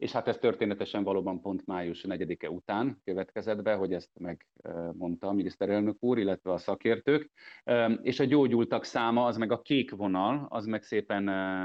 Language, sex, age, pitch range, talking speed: Hungarian, male, 30-49, 95-115 Hz, 165 wpm